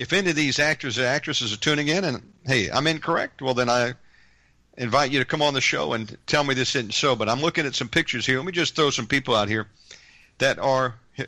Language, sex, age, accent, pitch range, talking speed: English, male, 50-69, American, 125-155 Hz, 250 wpm